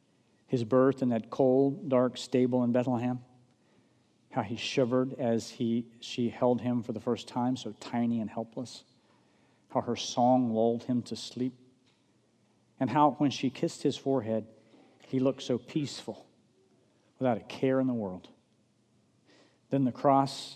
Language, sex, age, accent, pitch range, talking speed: English, male, 50-69, American, 110-125 Hz, 150 wpm